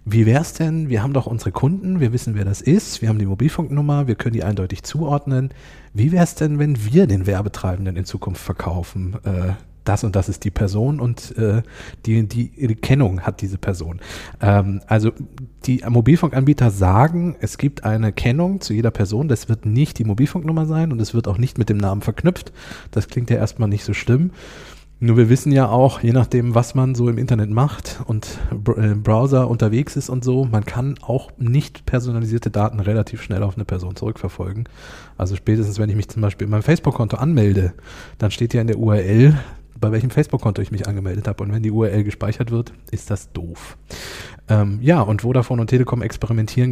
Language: German